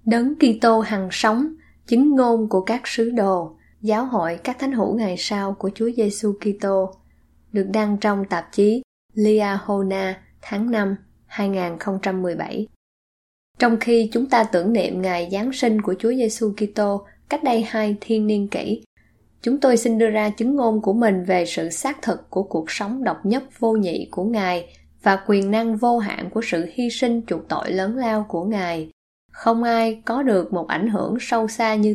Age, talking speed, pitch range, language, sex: 10-29, 185 wpm, 195-235 Hz, Vietnamese, female